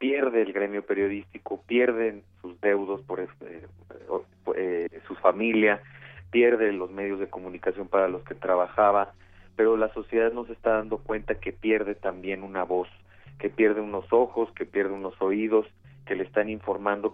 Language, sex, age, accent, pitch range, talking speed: Spanish, male, 40-59, Mexican, 90-110 Hz, 160 wpm